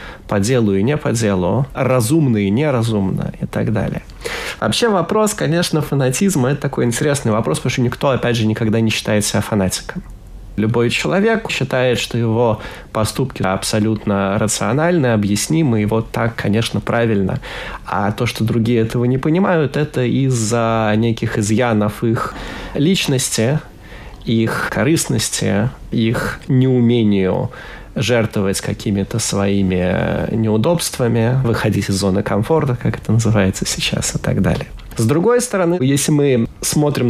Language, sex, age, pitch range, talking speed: Russian, male, 20-39, 110-130 Hz, 135 wpm